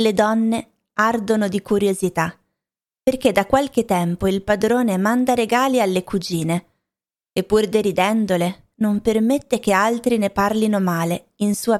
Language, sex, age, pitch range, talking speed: Italian, female, 20-39, 180-220 Hz, 135 wpm